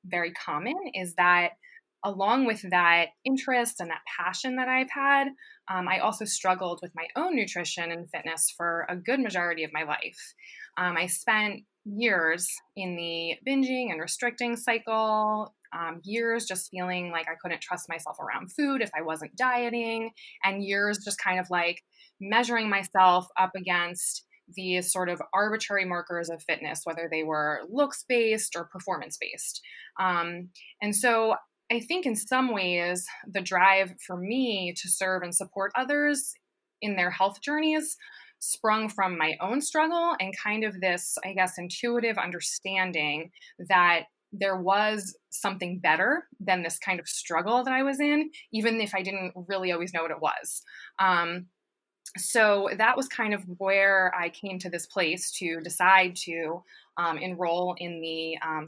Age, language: 20-39, English